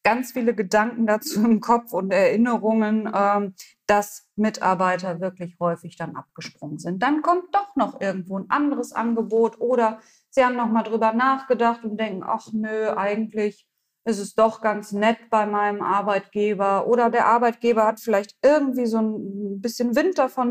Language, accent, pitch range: German, German, 190-230 Hz